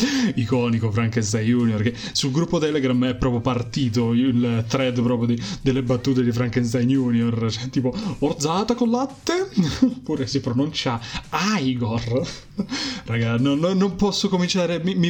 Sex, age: male, 20-39